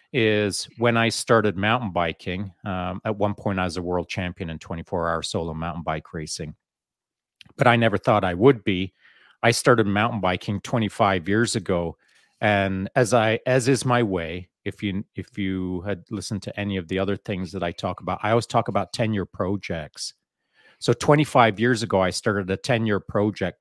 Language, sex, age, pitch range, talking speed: English, male, 40-59, 95-115 Hz, 190 wpm